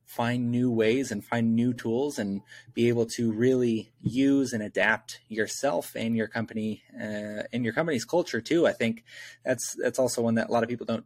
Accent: American